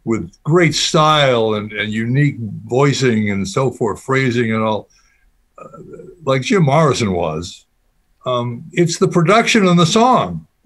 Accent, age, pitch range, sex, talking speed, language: American, 60-79, 120-175 Hz, male, 140 wpm, English